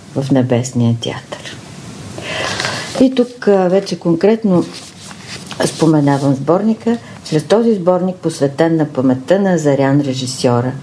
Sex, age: female, 50-69